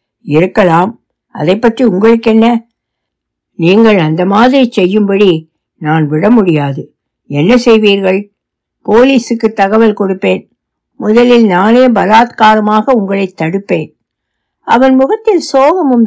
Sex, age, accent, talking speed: female, 60-79, native, 90 wpm